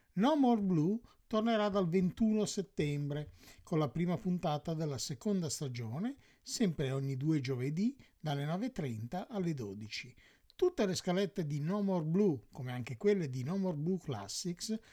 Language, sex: English, male